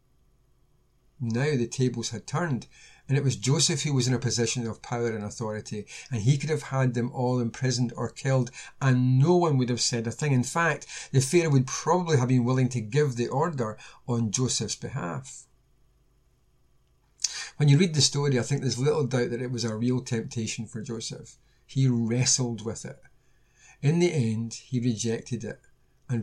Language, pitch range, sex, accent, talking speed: English, 120-140 Hz, male, British, 185 wpm